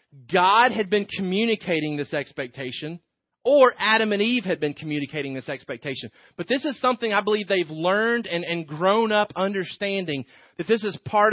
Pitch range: 175-215 Hz